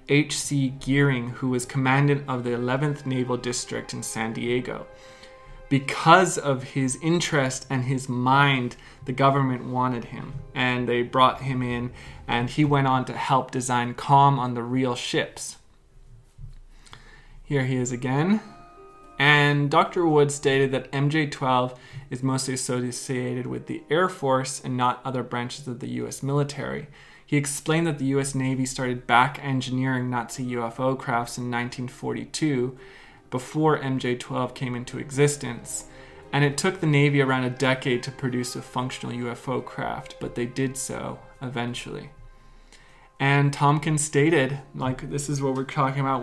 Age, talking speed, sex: 20-39, 145 wpm, male